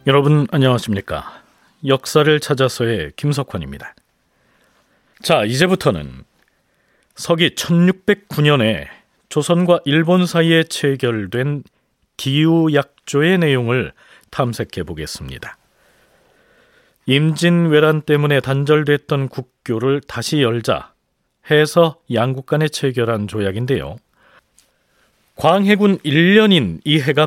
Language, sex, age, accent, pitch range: Korean, male, 40-59, native, 130-165 Hz